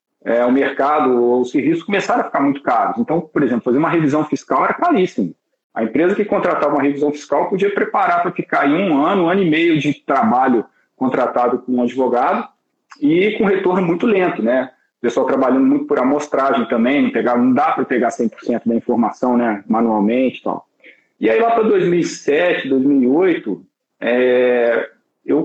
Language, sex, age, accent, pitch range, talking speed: Portuguese, male, 40-59, Brazilian, 125-185 Hz, 185 wpm